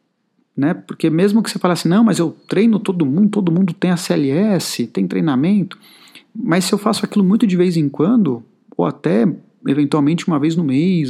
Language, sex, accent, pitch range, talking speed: Portuguese, male, Brazilian, 150-205 Hz, 195 wpm